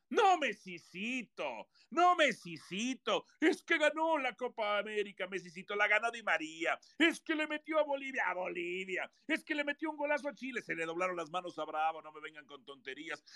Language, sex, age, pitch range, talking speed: Spanish, male, 50-69, 175-255 Hz, 195 wpm